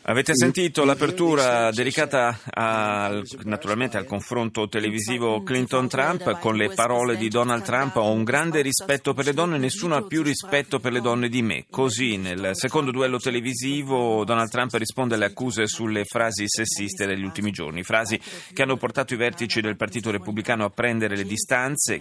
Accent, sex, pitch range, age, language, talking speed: native, male, 105-130 Hz, 30-49, Italian, 165 wpm